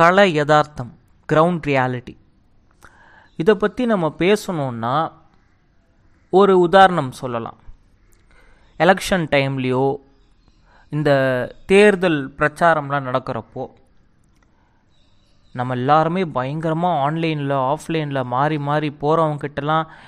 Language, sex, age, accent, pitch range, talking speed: Tamil, male, 30-49, native, 125-155 Hz, 70 wpm